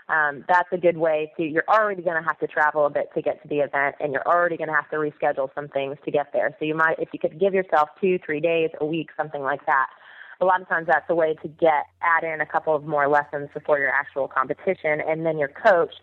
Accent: American